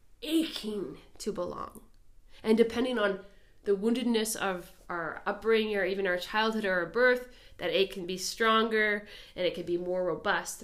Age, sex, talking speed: 20-39, female, 165 wpm